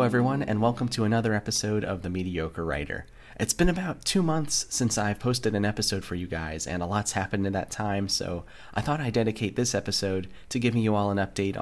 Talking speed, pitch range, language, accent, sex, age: 220 wpm, 95-115 Hz, English, American, male, 30-49